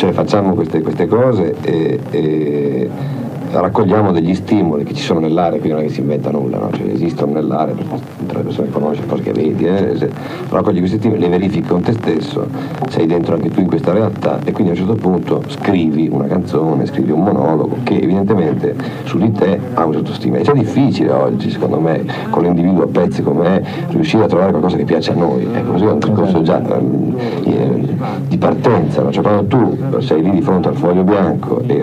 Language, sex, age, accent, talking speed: Italian, male, 50-69, native, 210 wpm